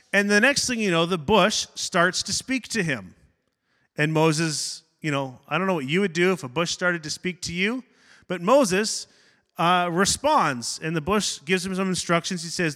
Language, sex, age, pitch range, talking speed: English, male, 30-49, 160-205 Hz, 210 wpm